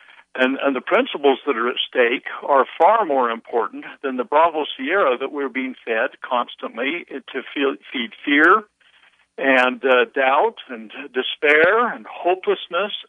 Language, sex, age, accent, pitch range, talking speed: English, male, 60-79, American, 130-185 Hz, 145 wpm